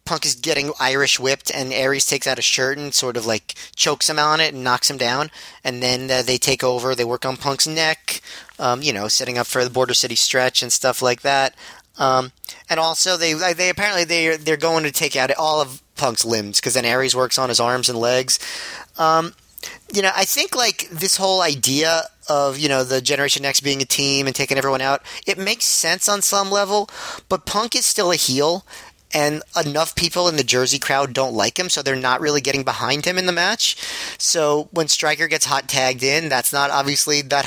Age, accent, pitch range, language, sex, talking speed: 30-49, American, 130-165 Hz, English, male, 225 wpm